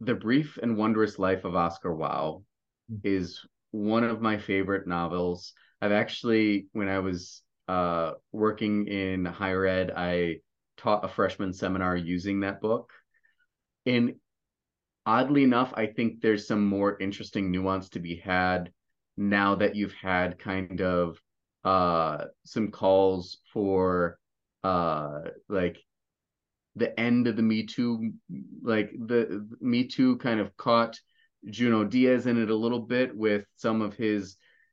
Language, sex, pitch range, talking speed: English, male, 95-125 Hz, 140 wpm